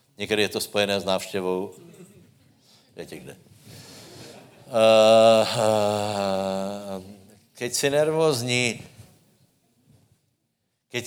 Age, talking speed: 60-79, 75 wpm